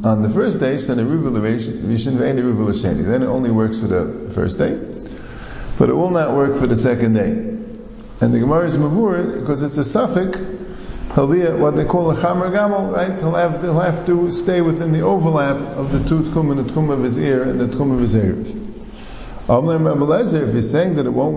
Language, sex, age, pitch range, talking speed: English, male, 50-69, 115-165 Hz, 200 wpm